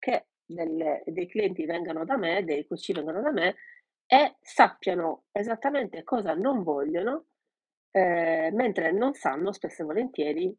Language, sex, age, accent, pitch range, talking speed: Italian, female, 40-59, native, 170-255 Hz, 140 wpm